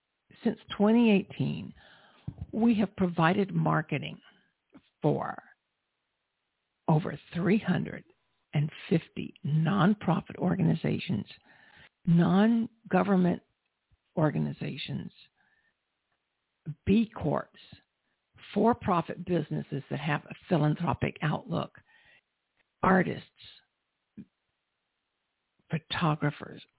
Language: English